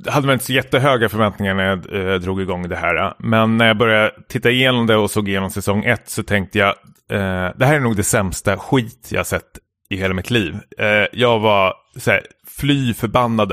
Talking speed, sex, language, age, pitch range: 205 wpm, male, Swedish, 30-49, 100-125 Hz